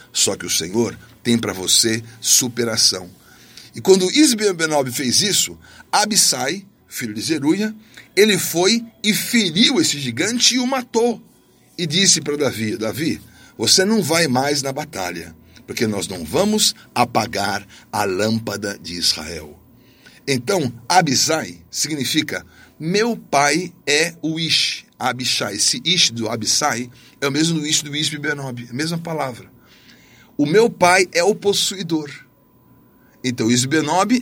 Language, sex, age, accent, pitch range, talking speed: Portuguese, male, 60-79, Brazilian, 125-190 Hz, 135 wpm